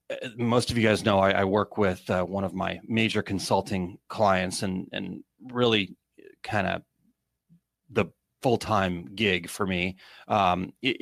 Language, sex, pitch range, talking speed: English, male, 90-105 Hz, 145 wpm